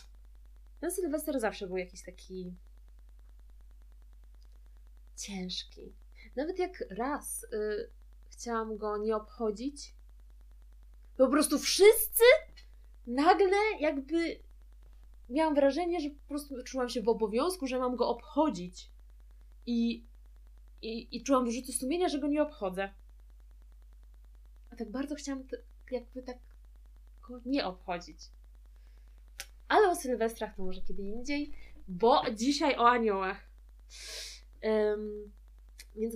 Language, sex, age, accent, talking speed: Polish, female, 20-39, native, 110 wpm